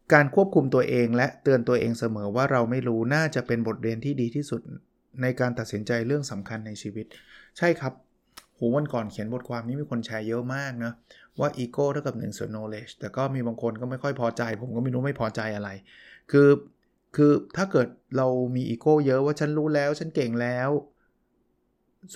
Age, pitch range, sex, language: 20-39, 115-140 Hz, male, Thai